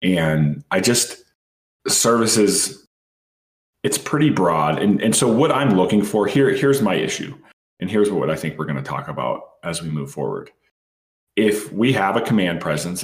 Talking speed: 175 wpm